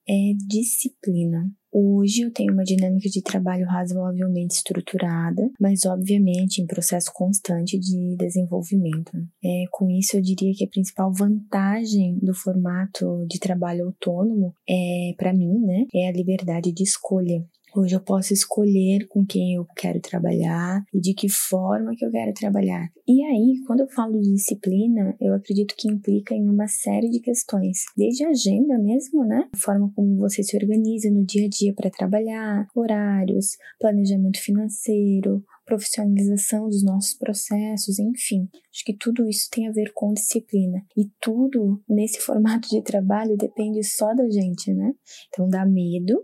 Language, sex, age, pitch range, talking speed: Portuguese, female, 20-39, 185-215 Hz, 155 wpm